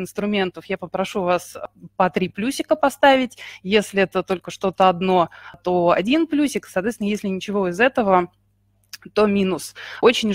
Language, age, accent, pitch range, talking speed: Russian, 20-39, native, 185-230 Hz, 140 wpm